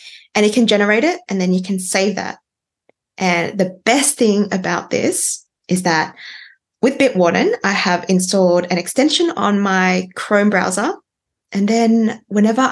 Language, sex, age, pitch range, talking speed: English, female, 20-39, 185-240 Hz, 155 wpm